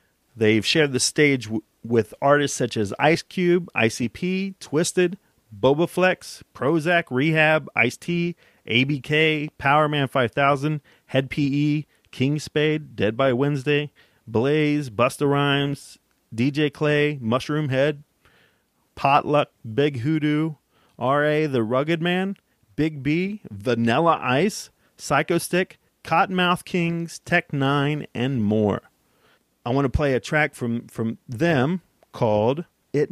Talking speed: 115 wpm